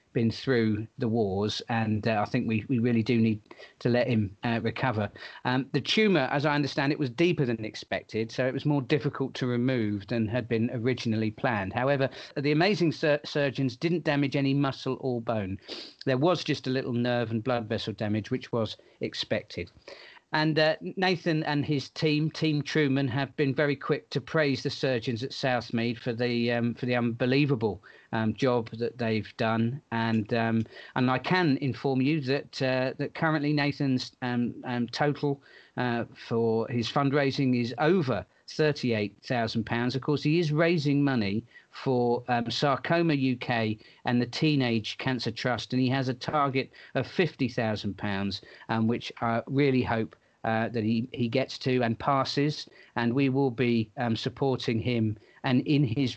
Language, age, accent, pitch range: English, 40-59, British, 115-140 Hz